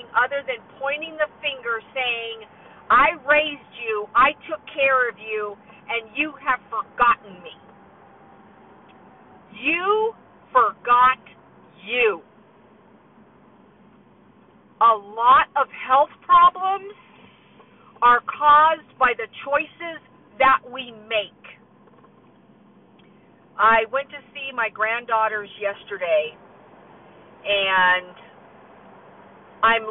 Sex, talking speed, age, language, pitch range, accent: female, 90 wpm, 50-69, English, 220-285 Hz, American